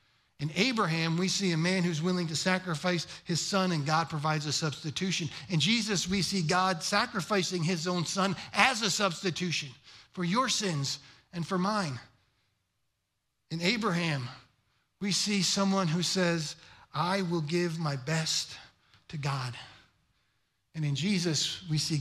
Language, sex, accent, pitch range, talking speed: English, male, American, 135-180 Hz, 145 wpm